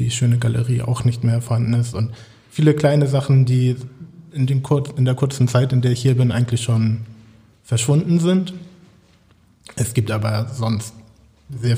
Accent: German